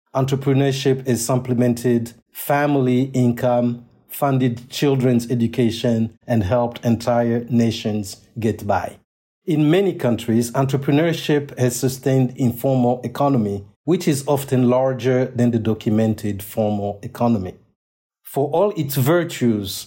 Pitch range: 120-140 Hz